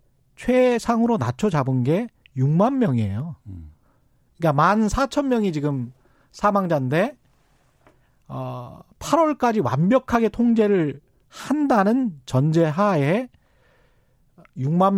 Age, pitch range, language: 40-59, 145-220 Hz, Korean